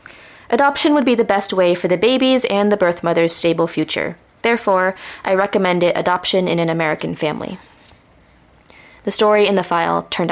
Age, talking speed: 20-39, 175 wpm